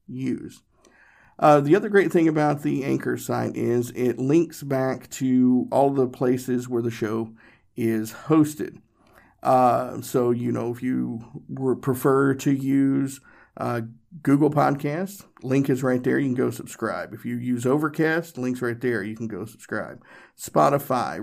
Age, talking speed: 50-69, 155 wpm